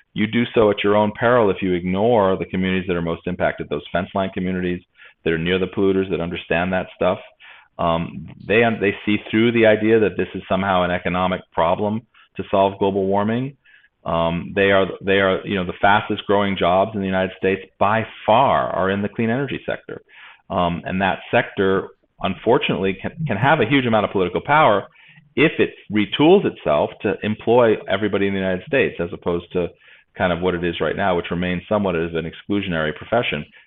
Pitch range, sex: 90-105 Hz, male